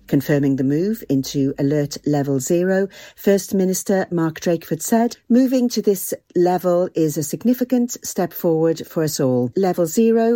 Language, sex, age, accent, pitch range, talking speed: English, female, 40-59, British, 155-205 Hz, 150 wpm